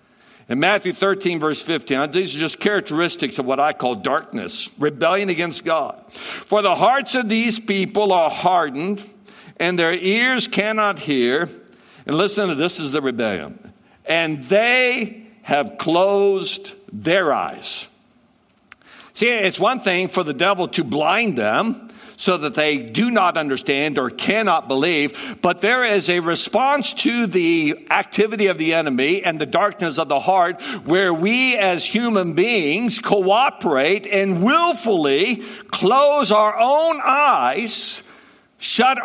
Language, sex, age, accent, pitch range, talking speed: English, male, 60-79, American, 180-245 Hz, 140 wpm